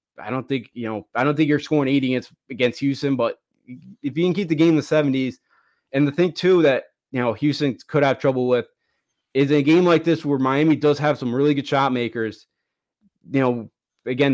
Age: 20-39